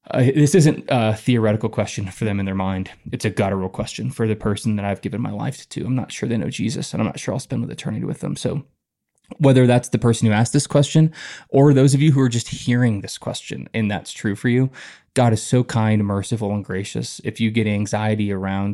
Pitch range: 105-125 Hz